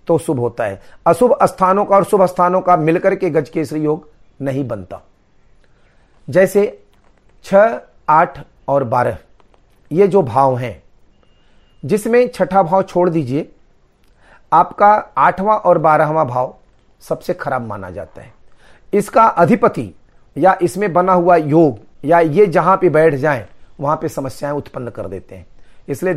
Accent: native